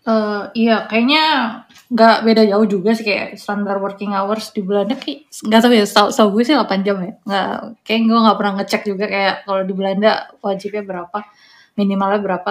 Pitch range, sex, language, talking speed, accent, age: 200-235 Hz, female, Indonesian, 195 wpm, native, 20-39